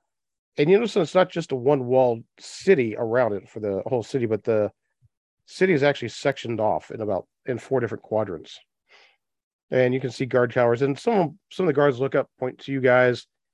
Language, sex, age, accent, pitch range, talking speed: English, male, 40-59, American, 110-130 Hz, 210 wpm